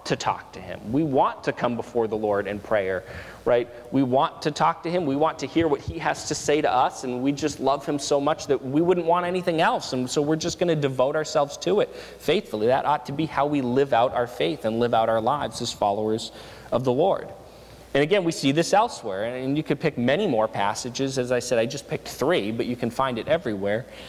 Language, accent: English, American